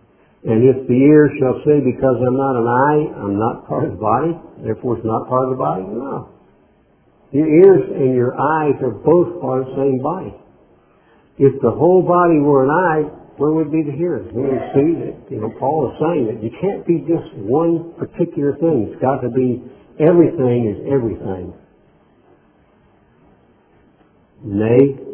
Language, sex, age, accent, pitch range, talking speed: English, male, 60-79, American, 115-155 Hz, 180 wpm